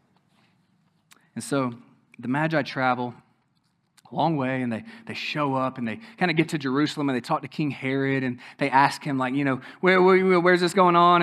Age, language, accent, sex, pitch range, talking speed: 20-39, English, American, male, 135-185 Hz, 210 wpm